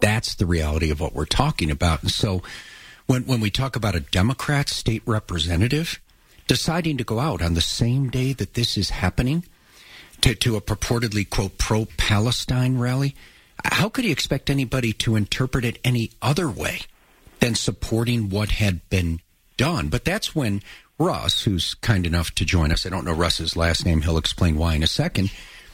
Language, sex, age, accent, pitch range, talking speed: English, male, 50-69, American, 90-115 Hz, 180 wpm